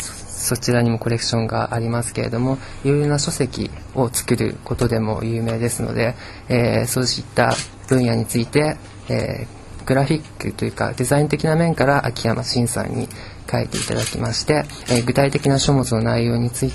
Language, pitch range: Japanese, 115-135 Hz